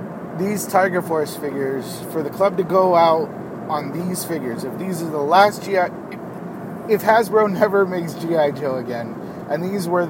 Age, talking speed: 30-49, 170 wpm